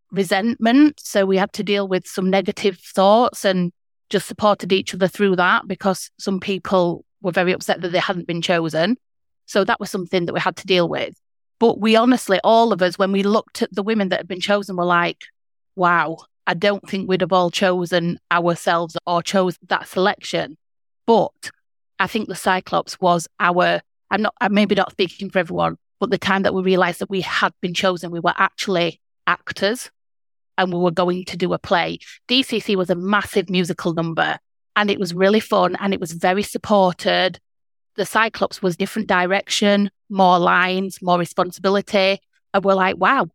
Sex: female